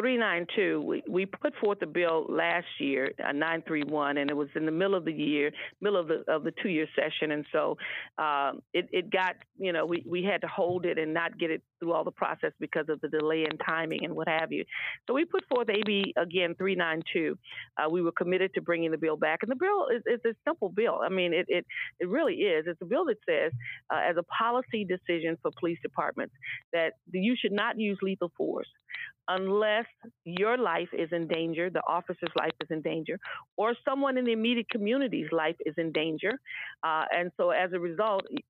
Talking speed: 215 wpm